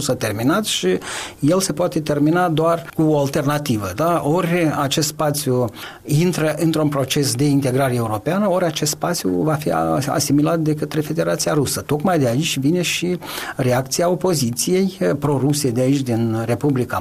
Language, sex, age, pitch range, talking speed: Romanian, male, 40-59, 125-155 Hz, 155 wpm